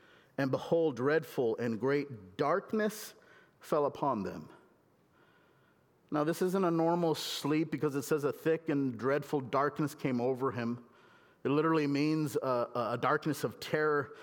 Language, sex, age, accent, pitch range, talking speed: English, male, 50-69, American, 130-155 Hz, 145 wpm